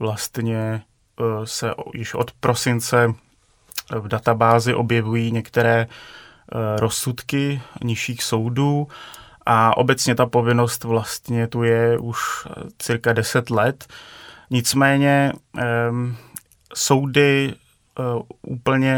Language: Czech